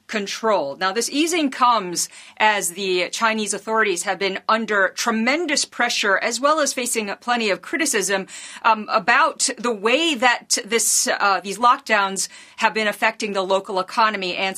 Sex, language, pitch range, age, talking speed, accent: female, English, 200-260 Hz, 40-59, 150 wpm, American